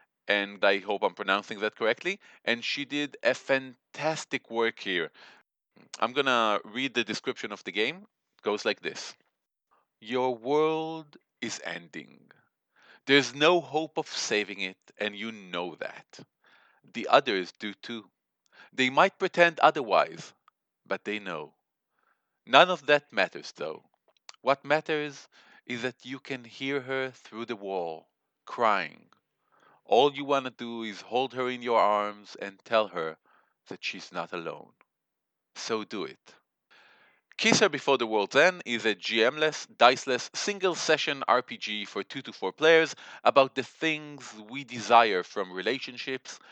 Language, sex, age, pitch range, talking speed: English, male, 40-59, 115-145 Hz, 145 wpm